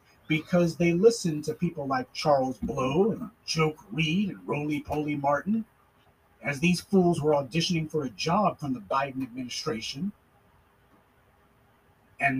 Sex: male